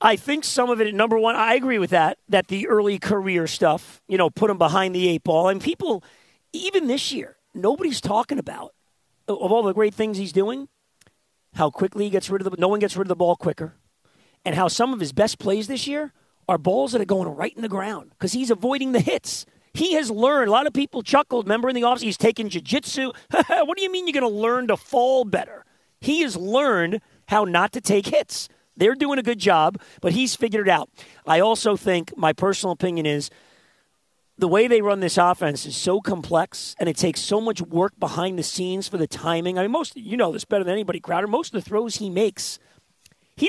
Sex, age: male, 40-59